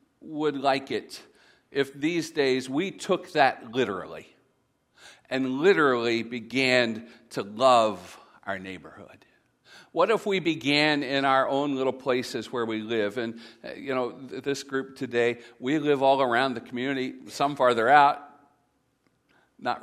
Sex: male